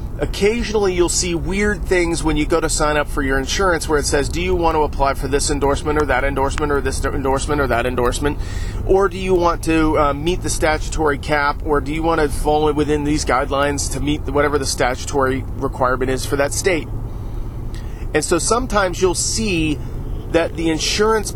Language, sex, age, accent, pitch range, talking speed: English, male, 40-59, American, 130-160 Hz, 200 wpm